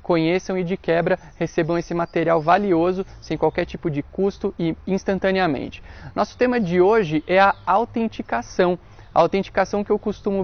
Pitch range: 160-200 Hz